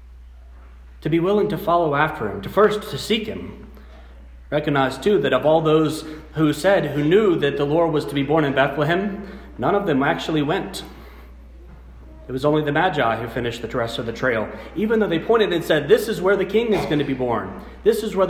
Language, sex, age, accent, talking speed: English, male, 40-59, American, 220 wpm